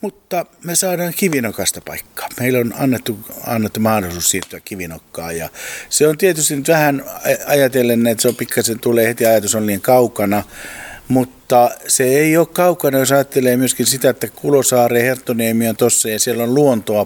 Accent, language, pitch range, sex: native, Finnish, 90-120 Hz, male